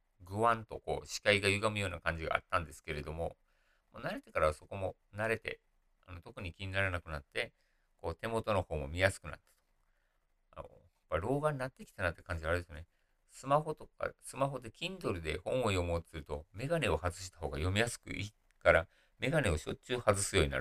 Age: 50-69